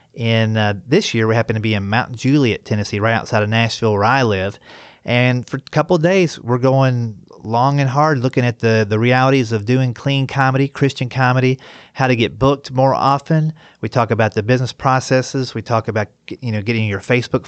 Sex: male